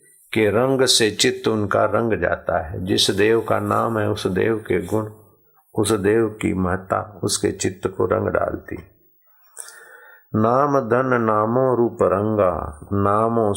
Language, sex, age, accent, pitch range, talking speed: Hindi, male, 50-69, native, 100-120 Hz, 140 wpm